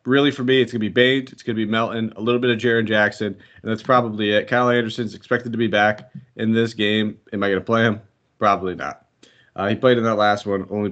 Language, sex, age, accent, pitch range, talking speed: English, male, 30-49, American, 100-120 Hz, 265 wpm